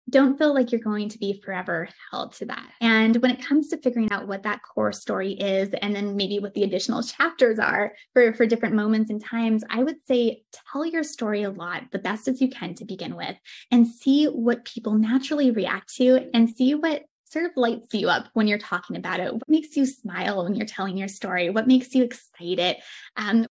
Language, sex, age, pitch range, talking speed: English, female, 20-39, 205-250 Hz, 225 wpm